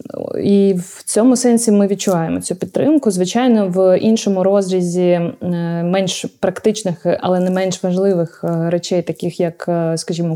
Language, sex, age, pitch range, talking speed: Ukrainian, female, 20-39, 175-205 Hz, 130 wpm